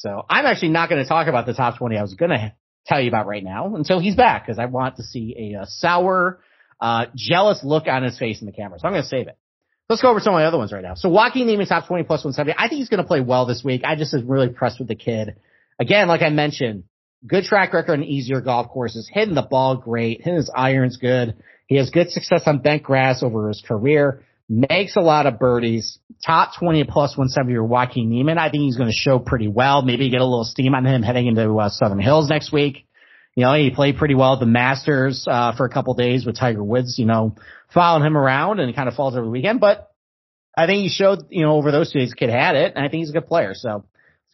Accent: American